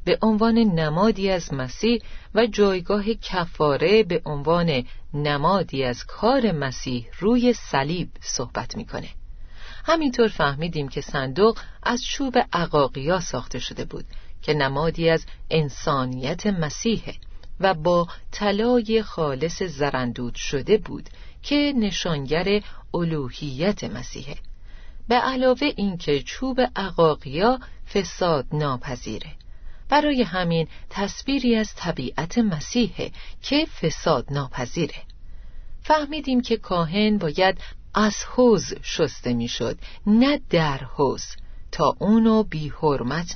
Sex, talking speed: female, 105 wpm